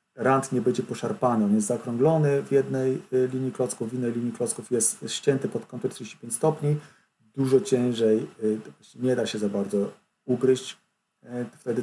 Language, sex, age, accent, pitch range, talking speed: Polish, male, 40-59, native, 110-140 Hz, 150 wpm